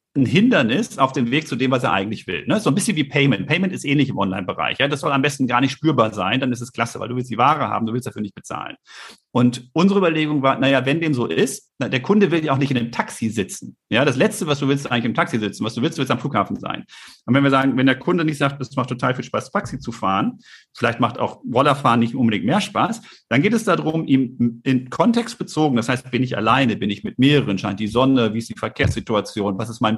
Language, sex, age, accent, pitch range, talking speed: German, male, 40-59, German, 120-145 Hz, 270 wpm